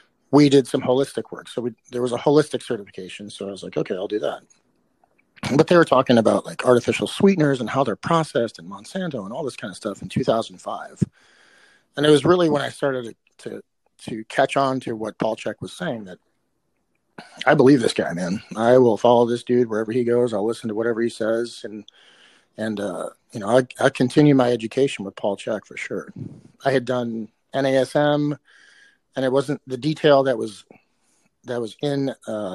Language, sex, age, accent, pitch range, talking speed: English, male, 40-59, American, 115-140 Hz, 200 wpm